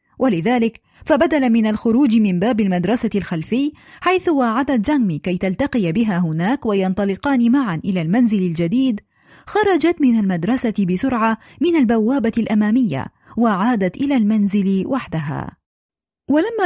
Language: Arabic